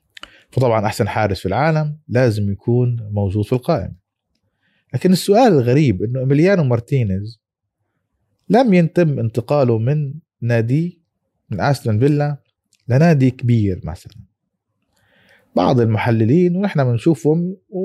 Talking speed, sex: 105 wpm, male